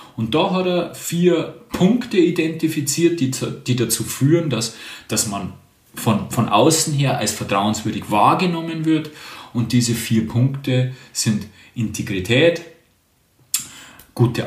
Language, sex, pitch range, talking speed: German, male, 115-145 Hz, 120 wpm